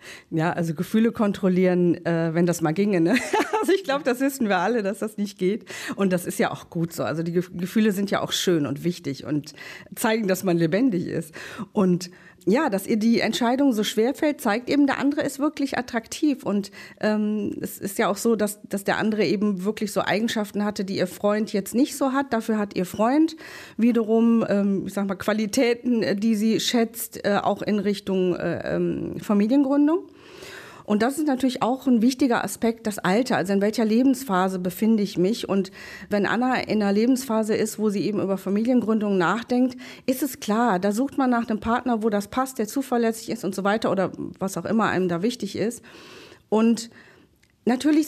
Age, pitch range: 40-59, 195-255 Hz